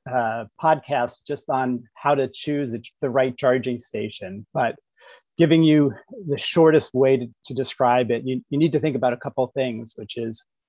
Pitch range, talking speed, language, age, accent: 120-140 Hz, 185 wpm, English, 30-49, American